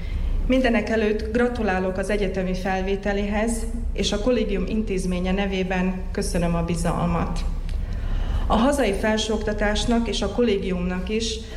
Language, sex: Hungarian, female